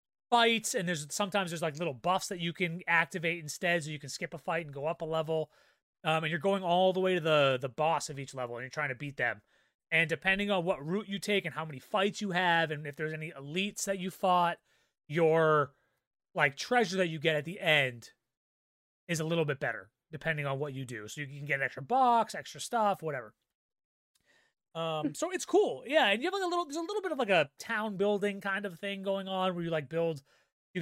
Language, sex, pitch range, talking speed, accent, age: English, male, 150-190 Hz, 240 wpm, American, 30-49